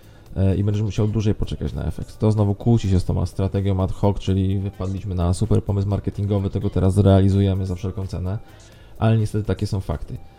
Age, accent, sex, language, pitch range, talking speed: 20-39, native, male, Polish, 95-110 Hz, 190 wpm